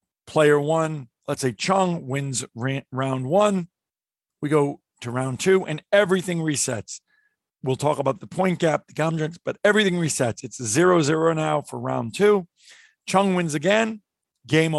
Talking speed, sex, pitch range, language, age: 160 wpm, male, 130-175 Hz, English, 50-69